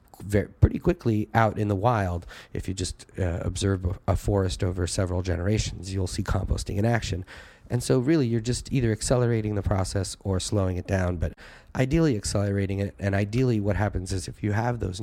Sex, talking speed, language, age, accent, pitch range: male, 190 wpm, English, 30-49, American, 95-110 Hz